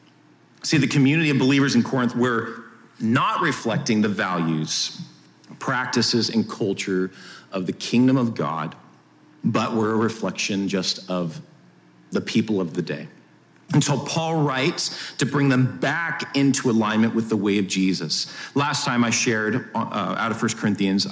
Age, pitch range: 40-59, 105-140 Hz